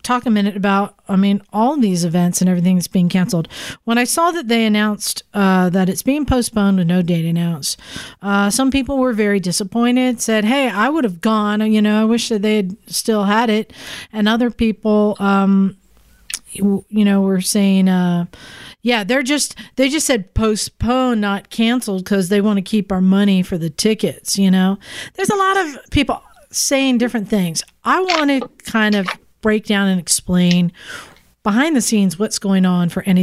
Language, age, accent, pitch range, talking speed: English, 40-59, American, 190-240 Hz, 190 wpm